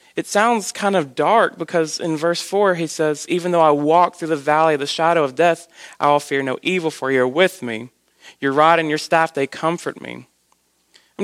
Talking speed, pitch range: 225 wpm, 145-185 Hz